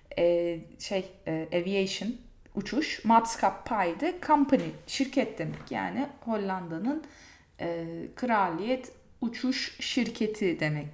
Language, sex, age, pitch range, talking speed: Turkish, female, 30-49, 185-260 Hz, 80 wpm